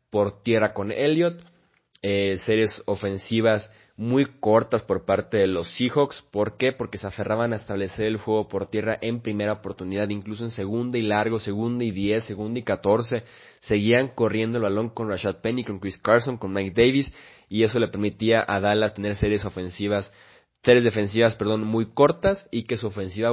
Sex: male